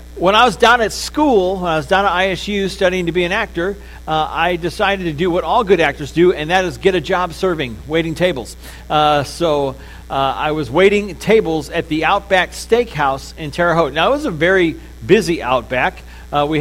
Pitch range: 135-185 Hz